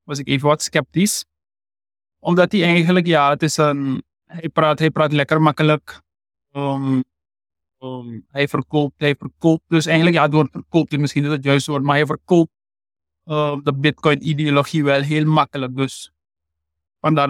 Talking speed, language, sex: 165 wpm, Dutch, male